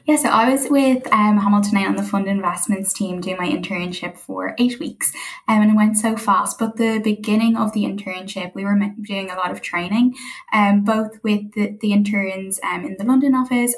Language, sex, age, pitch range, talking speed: English, female, 10-29, 185-220 Hz, 210 wpm